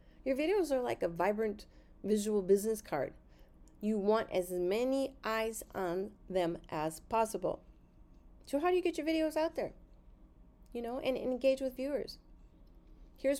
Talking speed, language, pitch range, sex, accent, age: 155 wpm, English, 185-250 Hz, female, American, 30-49